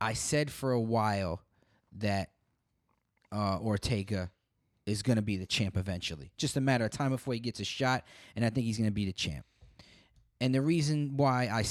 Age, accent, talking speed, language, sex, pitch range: 20-39, American, 200 wpm, English, male, 105-130 Hz